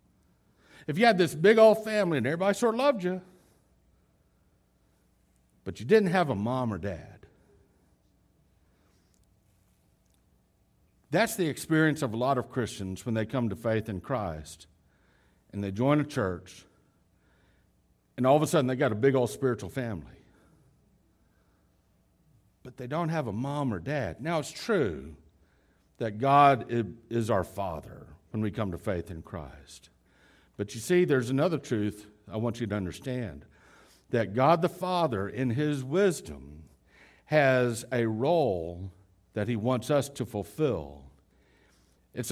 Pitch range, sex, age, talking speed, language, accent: 95-140 Hz, male, 60-79, 145 wpm, English, American